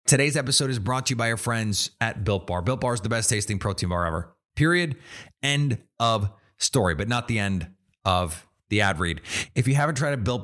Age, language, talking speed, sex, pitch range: 30-49, English, 225 wpm, male, 95-120 Hz